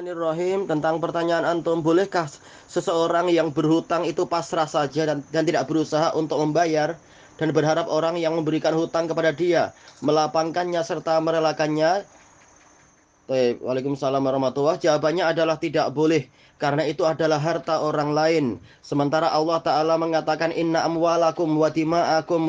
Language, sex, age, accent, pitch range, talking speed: Indonesian, male, 20-39, native, 155-170 Hz, 130 wpm